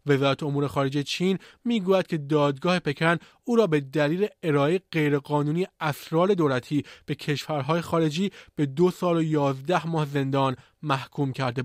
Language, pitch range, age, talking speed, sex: Persian, 145-165 Hz, 20-39, 145 wpm, male